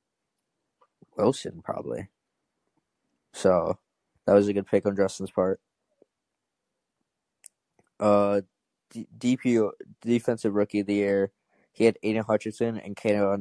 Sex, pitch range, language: male, 95-105 Hz, English